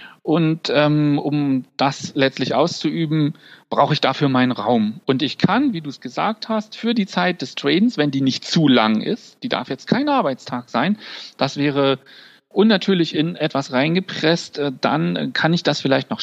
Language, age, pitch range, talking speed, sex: German, 40-59, 150-215 Hz, 175 wpm, male